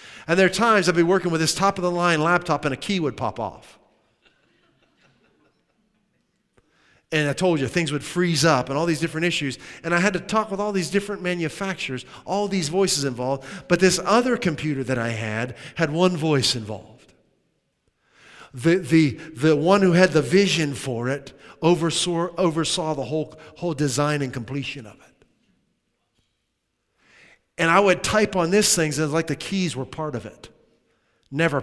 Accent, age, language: American, 40-59, English